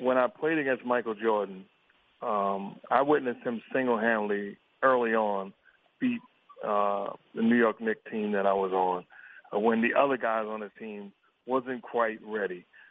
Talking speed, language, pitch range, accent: 160 wpm, English, 105-125 Hz, American